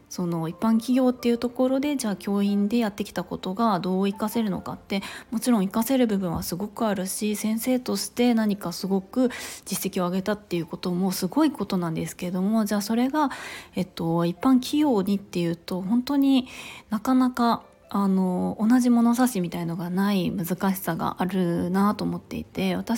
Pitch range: 185-245 Hz